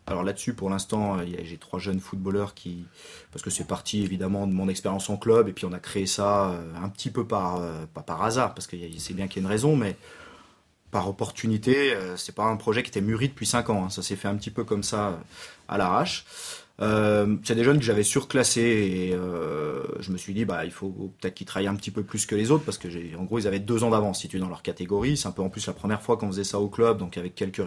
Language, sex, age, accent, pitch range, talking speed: French, male, 30-49, French, 90-115 Hz, 255 wpm